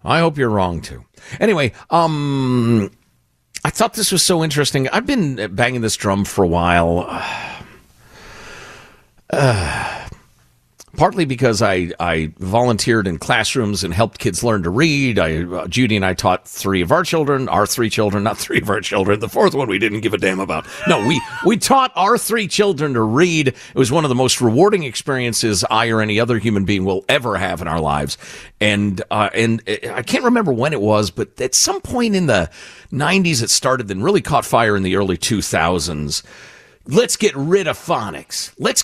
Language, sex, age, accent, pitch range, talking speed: English, male, 50-69, American, 100-155 Hz, 190 wpm